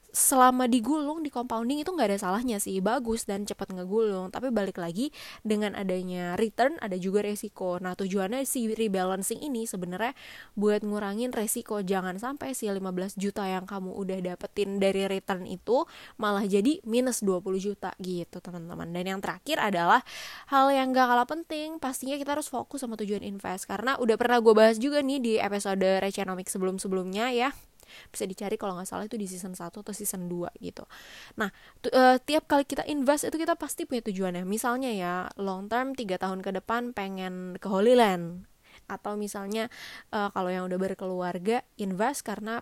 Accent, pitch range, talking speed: native, 190-245 Hz, 175 wpm